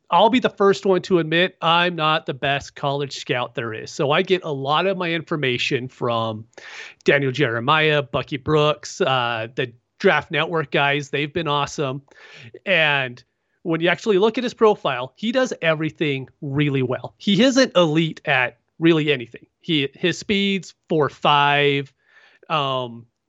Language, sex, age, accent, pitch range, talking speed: English, male, 30-49, American, 140-190 Hz, 155 wpm